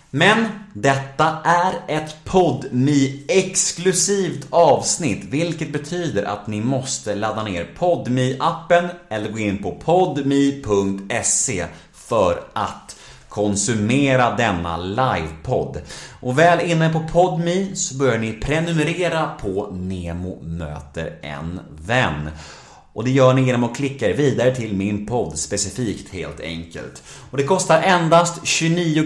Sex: male